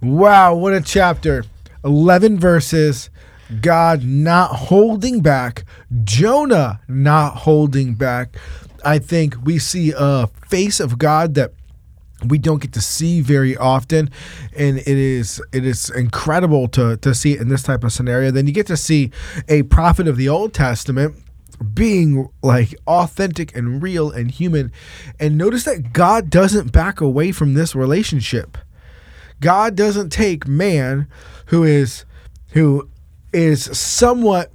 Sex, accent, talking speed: male, American, 140 wpm